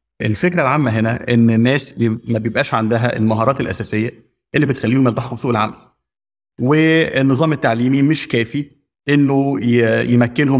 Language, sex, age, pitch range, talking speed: Arabic, male, 30-49, 115-135 Hz, 120 wpm